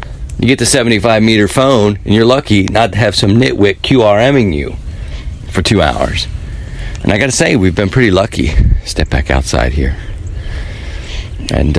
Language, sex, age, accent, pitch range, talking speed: English, male, 40-59, American, 80-100 Hz, 165 wpm